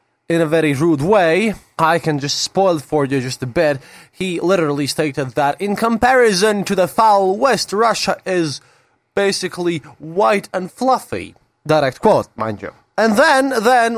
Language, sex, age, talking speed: English, male, 20-39, 160 wpm